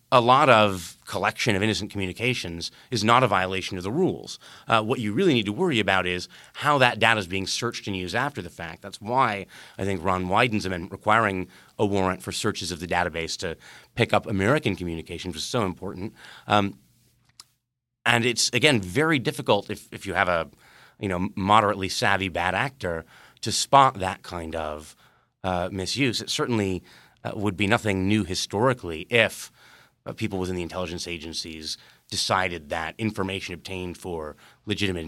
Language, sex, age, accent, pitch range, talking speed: English, male, 30-49, American, 90-115 Hz, 175 wpm